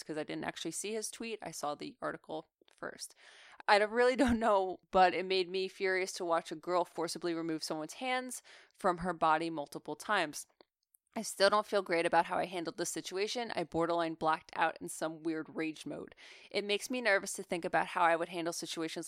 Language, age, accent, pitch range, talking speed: English, 20-39, American, 165-200 Hz, 210 wpm